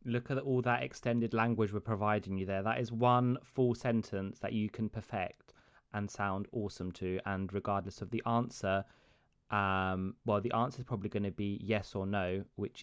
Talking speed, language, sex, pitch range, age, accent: 190 wpm, Greek, male, 95-120 Hz, 20-39, British